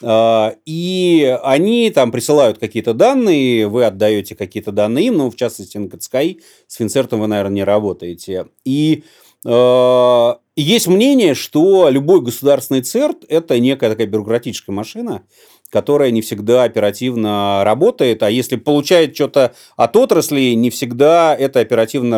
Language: Russian